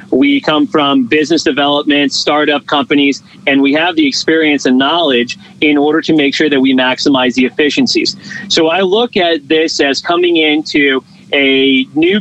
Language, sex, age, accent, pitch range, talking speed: English, male, 30-49, American, 140-170 Hz, 165 wpm